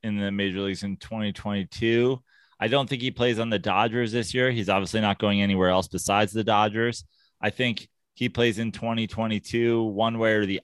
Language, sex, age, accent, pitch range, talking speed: English, male, 30-49, American, 100-125 Hz, 195 wpm